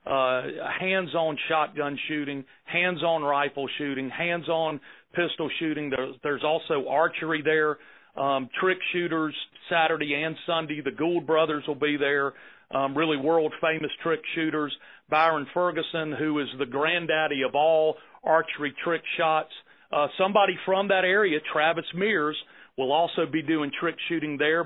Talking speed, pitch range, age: 135 wpm, 150-175 Hz, 40-59